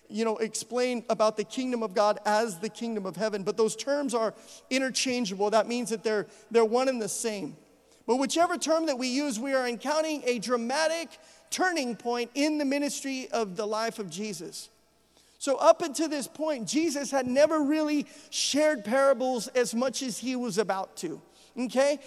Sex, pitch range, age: male, 235-285 Hz, 40-59